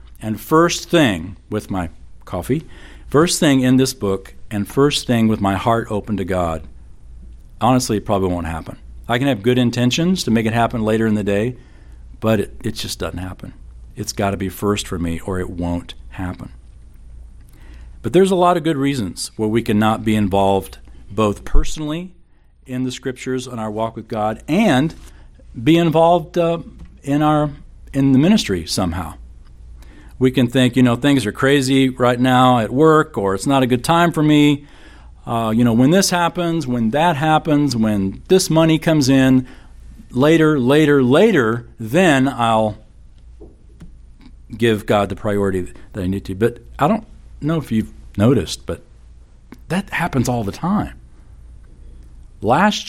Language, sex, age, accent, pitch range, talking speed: English, male, 50-69, American, 90-135 Hz, 170 wpm